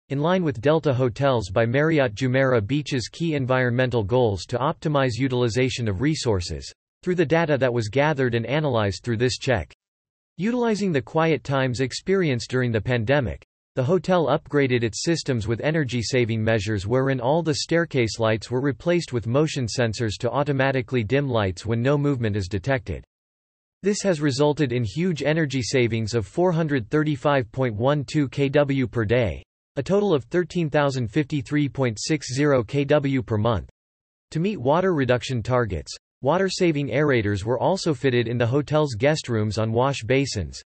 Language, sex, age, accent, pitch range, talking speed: English, male, 40-59, American, 115-150 Hz, 150 wpm